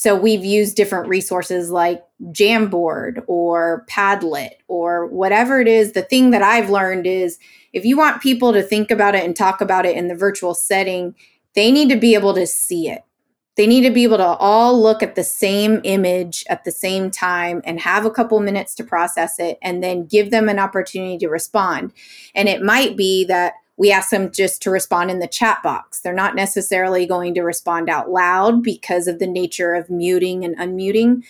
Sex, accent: female, American